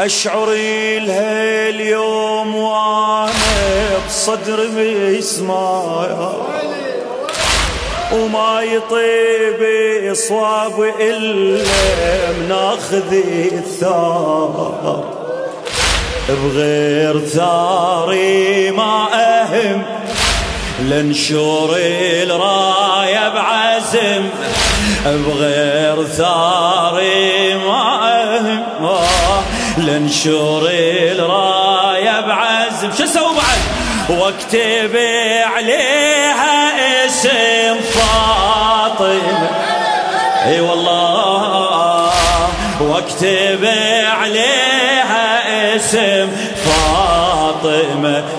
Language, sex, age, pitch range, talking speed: Arabic, male, 30-49, 170-220 Hz, 45 wpm